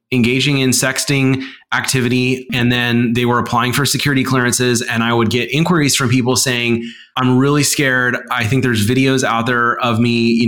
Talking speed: 185 wpm